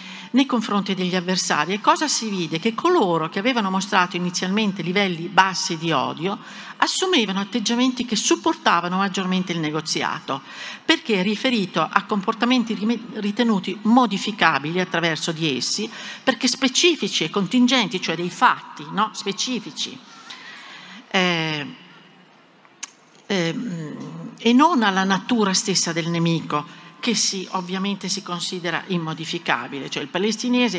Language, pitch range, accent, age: Italian, 175-235 Hz, native, 50-69